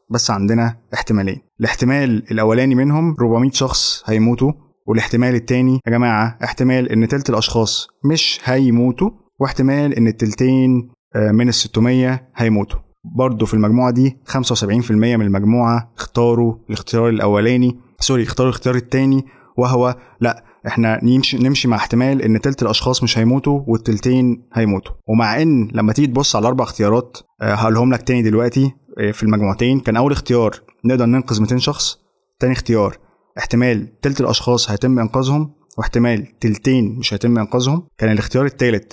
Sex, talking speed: male, 140 wpm